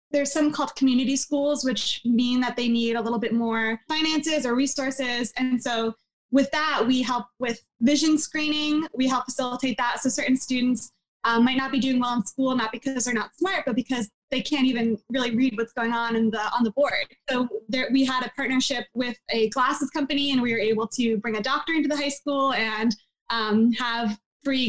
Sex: female